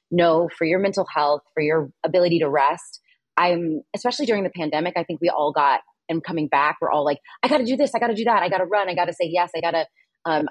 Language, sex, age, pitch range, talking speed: English, female, 20-39, 155-185 Hz, 250 wpm